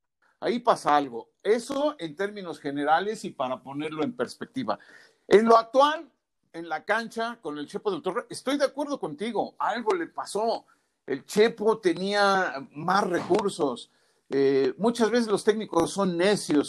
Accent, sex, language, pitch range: Mexican, male, Spanish, 160-230 Hz